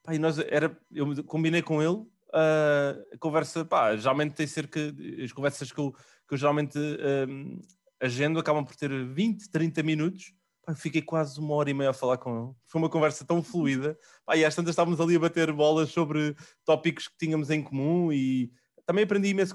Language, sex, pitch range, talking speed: Portuguese, male, 130-165 Hz, 195 wpm